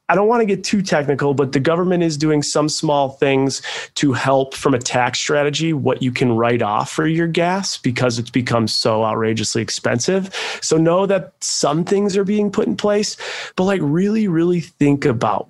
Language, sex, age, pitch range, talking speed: English, male, 30-49, 115-155 Hz, 200 wpm